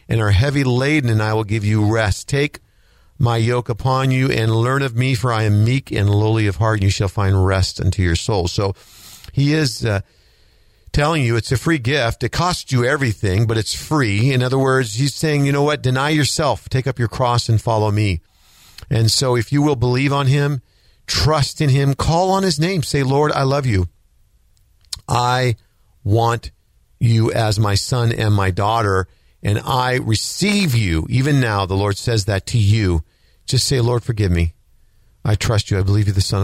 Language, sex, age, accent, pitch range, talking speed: English, male, 50-69, American, 100-130 Hz, 200 wpm